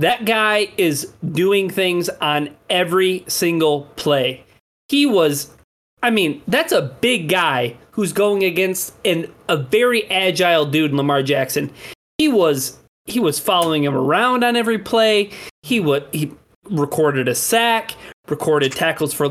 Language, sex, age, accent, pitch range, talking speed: English, male, 30-49, American, 145-205 Hz, 145 wpm